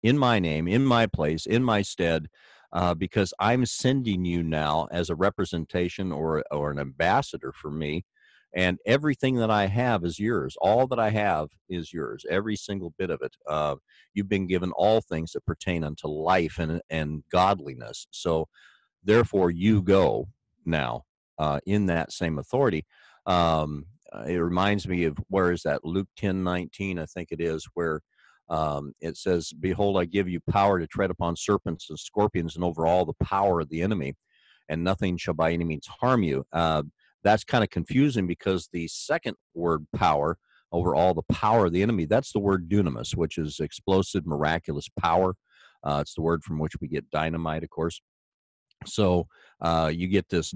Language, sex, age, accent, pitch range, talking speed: English, male, 50-69, American, 80-100 Hz, 180 wpm